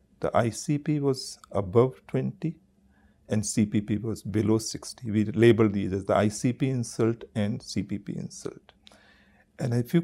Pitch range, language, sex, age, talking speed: 105-135 Hz, English, male, 50-69, 135 wpm